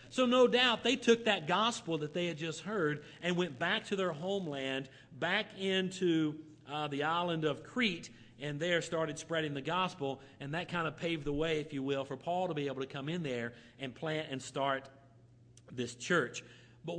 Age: 40-59